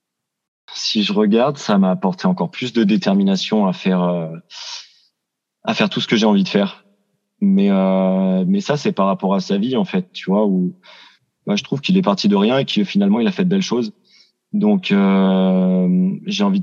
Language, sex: French, male